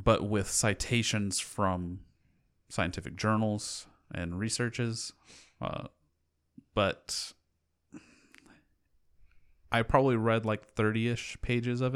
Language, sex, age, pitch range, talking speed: English, male, 30-49, 90-110 Hz, 85 wpm